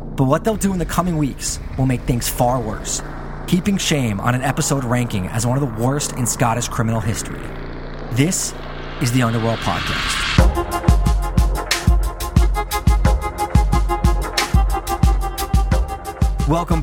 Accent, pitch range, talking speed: American, 115-145 Hz, 120 wpm